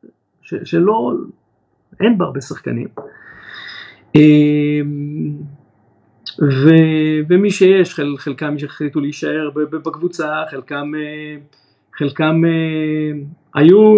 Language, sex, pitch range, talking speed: Hebrew, male, 135-170 Hz, 65 wpm